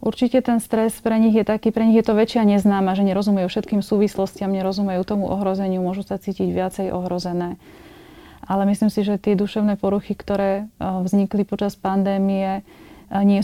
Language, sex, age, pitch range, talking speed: Slovak, female, 30-49, 185-200 Hz, 165 wpm